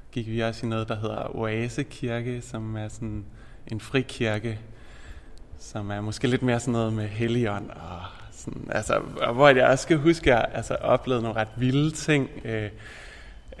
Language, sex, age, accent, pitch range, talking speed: Danish, male, 20-39, native, 105-125 Hz, 170 wpm